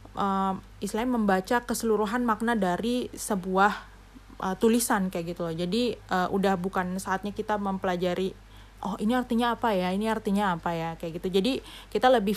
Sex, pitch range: female, 180-215 Hz